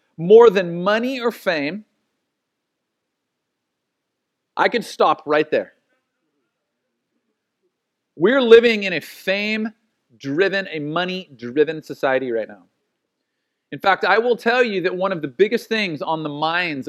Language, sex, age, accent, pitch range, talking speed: English, male, 40-59, American, 150-200 Hz, 130 wpm